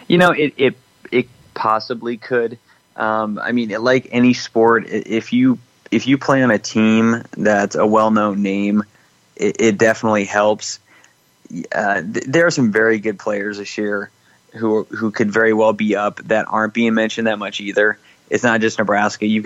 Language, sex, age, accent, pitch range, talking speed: English, male, 30-49, American, 105-120 Hz, 180 wpm